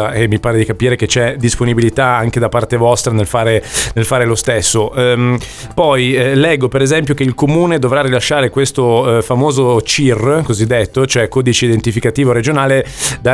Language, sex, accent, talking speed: Italian, male, native, 170 wpm